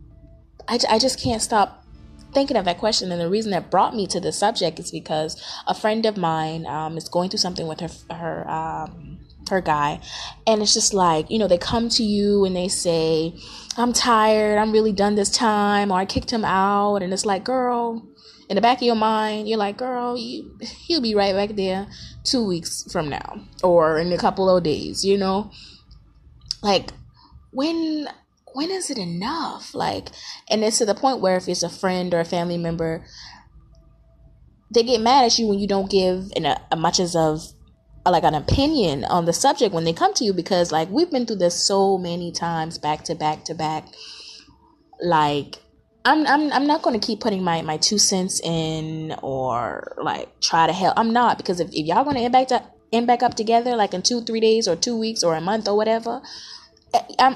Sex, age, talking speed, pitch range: female, 20-39, 205 wpm, 170-235 Hz